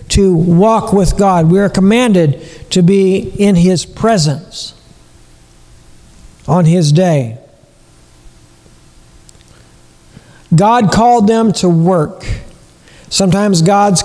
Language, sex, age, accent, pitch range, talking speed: English, male, 60-79, American, 160-210 Hz, 95 wpm